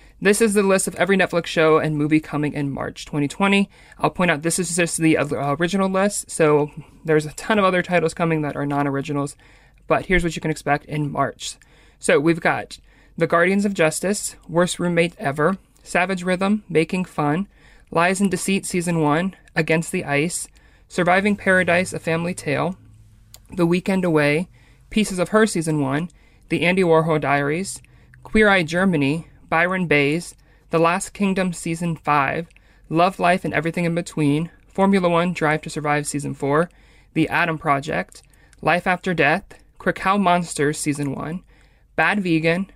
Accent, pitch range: American, 150-185 Hz